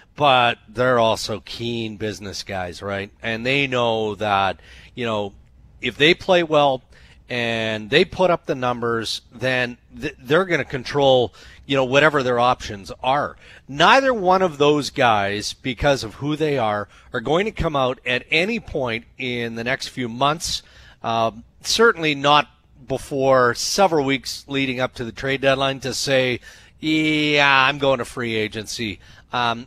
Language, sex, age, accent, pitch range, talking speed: English, male, 40-59, American, 115-145 Hz, 160 wpm